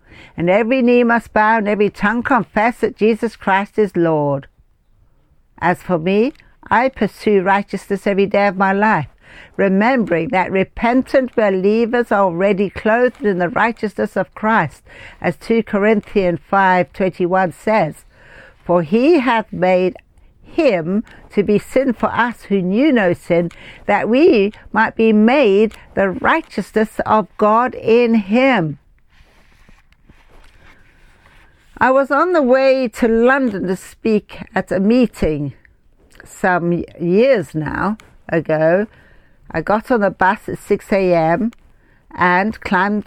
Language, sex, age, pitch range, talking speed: English, female, 60-79, 180-225 Hz, 130 wpm